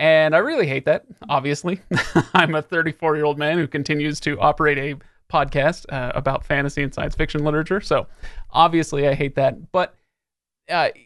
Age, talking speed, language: 30-49, 175 wpm, English